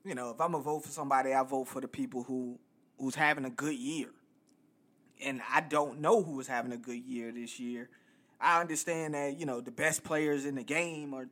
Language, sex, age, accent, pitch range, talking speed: English, male, 20-39, American, 130-165 Hz, 230 wpm